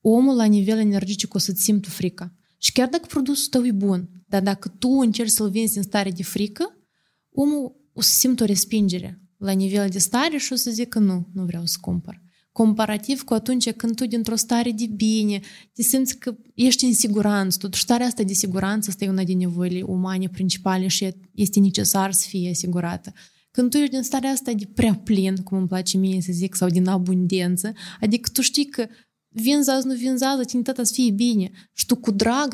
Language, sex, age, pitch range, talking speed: Romanian, female, 20-39, 190-235 Hz, 205 wpm